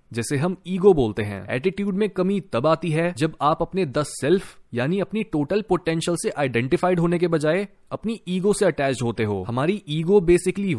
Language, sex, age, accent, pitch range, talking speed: Hindi, male, 30-49, native, 145-185 Hz, 190 wpm